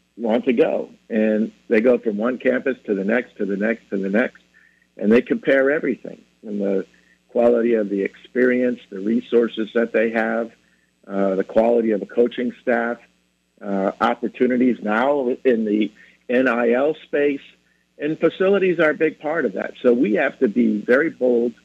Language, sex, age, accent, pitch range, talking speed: English, male, 60-79, American, 100-120 Hz, 170 wpm